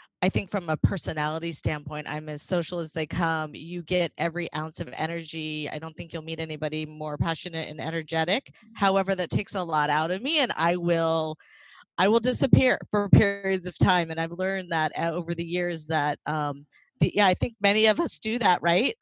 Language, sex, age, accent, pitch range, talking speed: English, female, 30-49, American, 160-210 Hz, 205 wpm